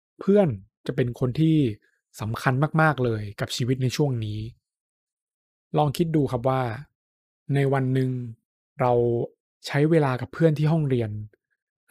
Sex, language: male, Thai